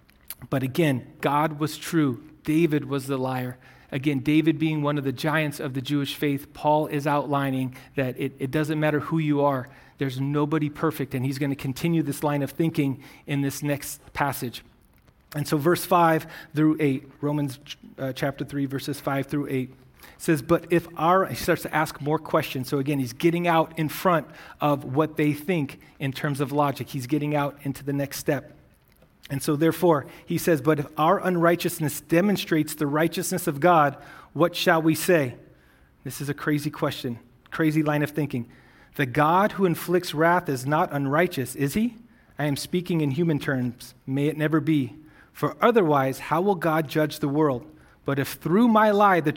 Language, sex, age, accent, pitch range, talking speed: English, male, 30-49, American, 140-160 Hz, 185 wpm